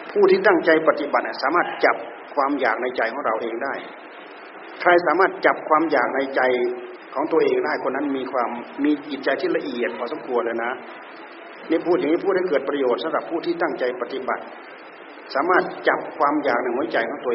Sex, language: male, Thai